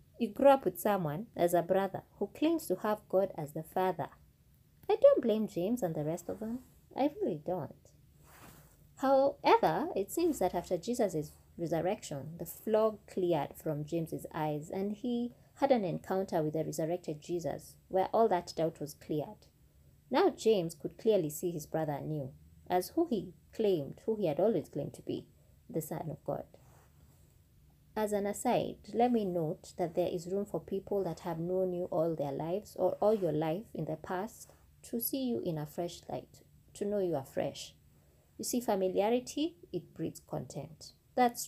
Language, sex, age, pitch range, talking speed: English, female, 20-39, 160-215 Hz, 180 wpm